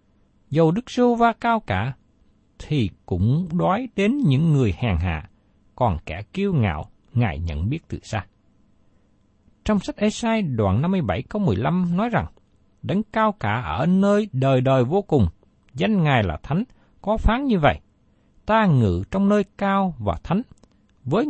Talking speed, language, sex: 165 wpm, Vietnamese, male